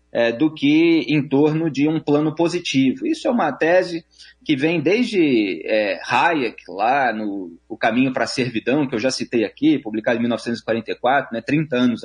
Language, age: Portuguese, 30-49